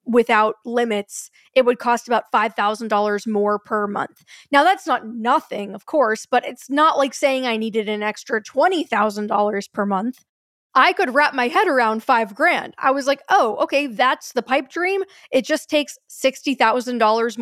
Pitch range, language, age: 230-285 Hz, English, 10-29